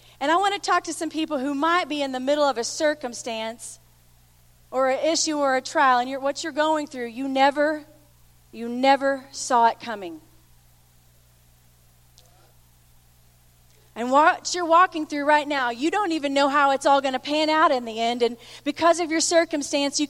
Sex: female